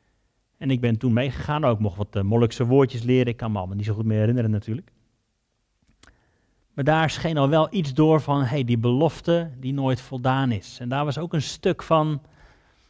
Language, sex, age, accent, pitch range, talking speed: Dutch, male, 40-59, Dutch, 115-145 Hz, 200 wpm